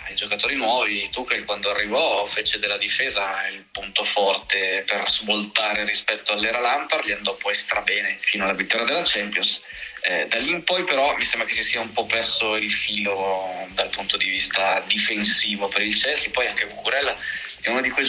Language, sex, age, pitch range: Italian, male, 20-39, 100-120 Hz